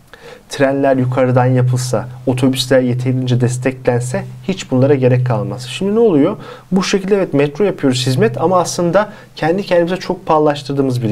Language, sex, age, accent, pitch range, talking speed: Turkish, male, 40-59, native, 120-160 Hz, 140 wpm